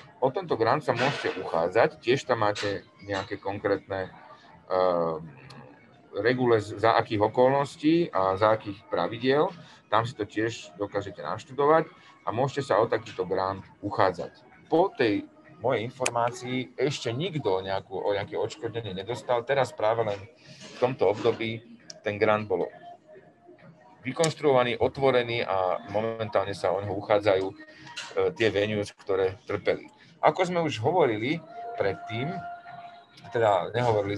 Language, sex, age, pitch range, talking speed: Slovak, male, 40-59, 100-140 Hz, 125 wpm